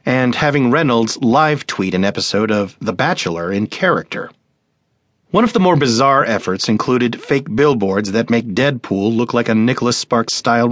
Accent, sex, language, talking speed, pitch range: American, male, English, 155 wpm, 105-135 Hz